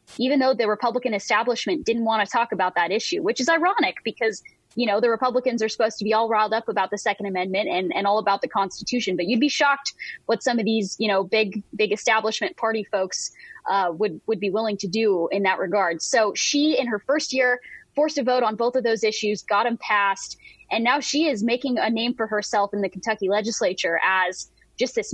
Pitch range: 200-250 Hz